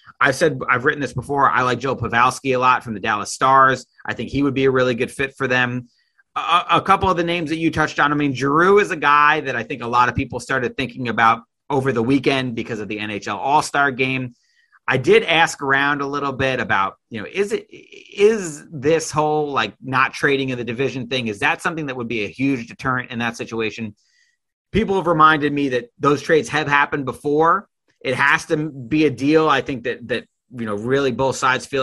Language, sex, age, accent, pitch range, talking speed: English, male, 30-49, American, 120-155 Hz, 230 wpm